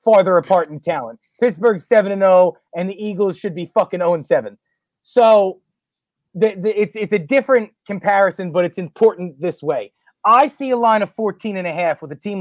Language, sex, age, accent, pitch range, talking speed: English, male, 30-49, American, 175-205 Hz, 195 wpm